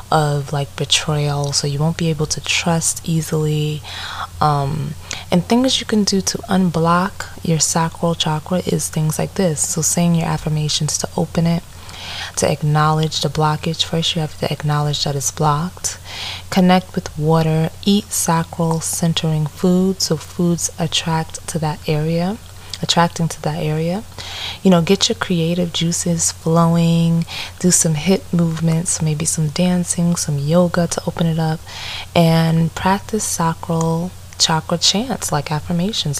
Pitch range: 145-175 Hz